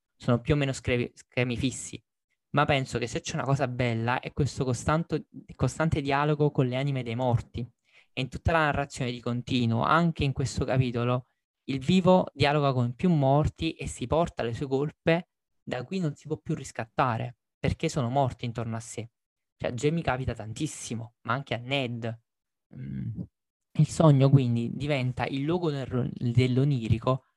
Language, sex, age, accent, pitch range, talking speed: Italian, male, 20-39, native, 120-150 Hz, 170 wpm